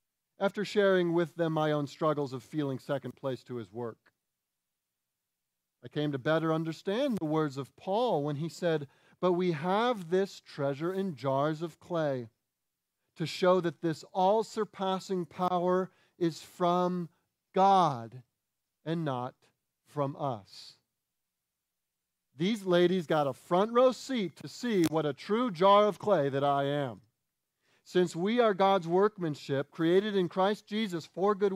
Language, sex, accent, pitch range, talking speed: English, male, American, 140-185 Hz, 145 wpm